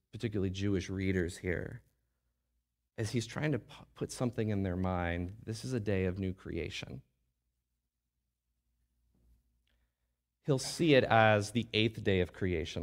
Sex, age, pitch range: male, 30-49, 75-105 Hz